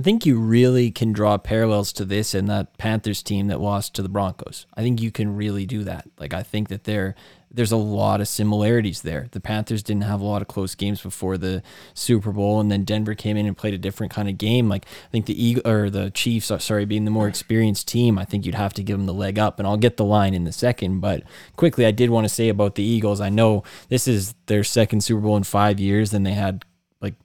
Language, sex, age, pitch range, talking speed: English, male, 20-39, 100-115 Hz, 260 wpm